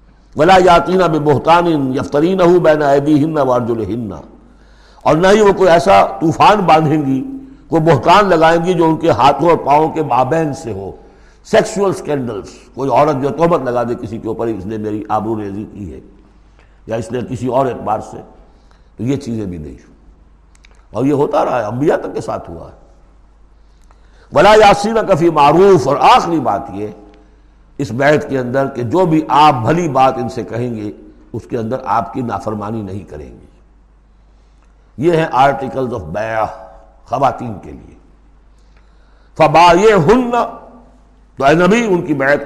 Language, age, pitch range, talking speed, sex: Urdu, 60-79, 115-170 Hz, 165 wpm, male